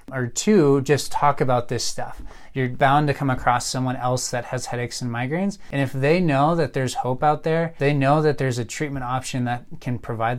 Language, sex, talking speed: English, male, 220 wpm